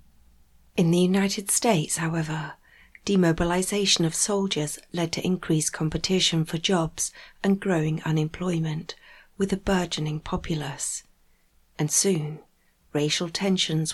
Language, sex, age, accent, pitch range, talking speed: English, female, 40-59, British, 165-185 Hz, 110 wpm